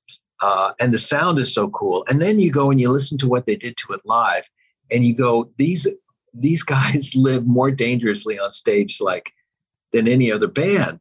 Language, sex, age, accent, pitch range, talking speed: English, male, 50-69, American, 120-200 Hz, 200 wpm